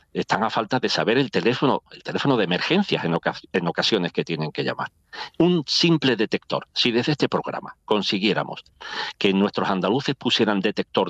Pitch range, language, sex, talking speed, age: 95-145 Hz, Spanish, male, 175 wpm, 40-59